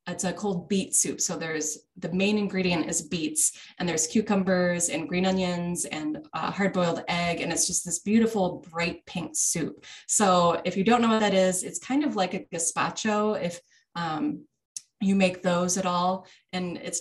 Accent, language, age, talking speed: American, English, 20-39, 190 wpm